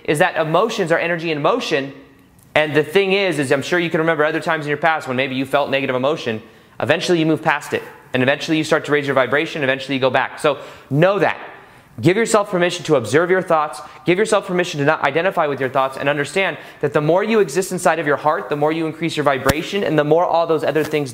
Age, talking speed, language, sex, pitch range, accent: 30-49, 250 wpm, English, male, 135-170 Hz, American